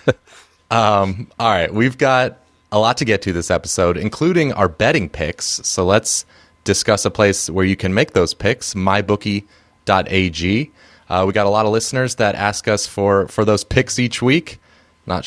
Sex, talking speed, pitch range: male, 175 wpm, 90-110 Hz